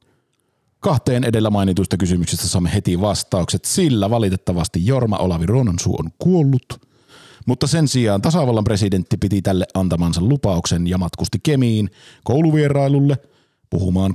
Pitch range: 95-130 Hz